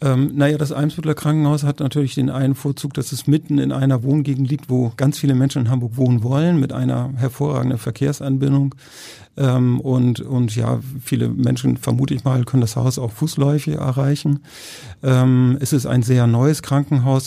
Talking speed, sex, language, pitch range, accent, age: 175 wpm, male, German, 120-140 Hz, German, 50-69